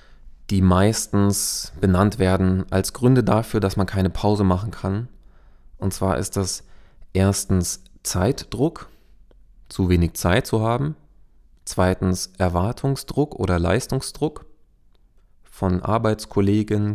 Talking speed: 105 wpm